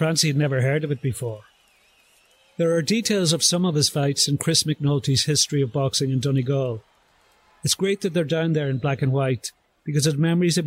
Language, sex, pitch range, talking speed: English, male, 140-165 Hz, 215 wpm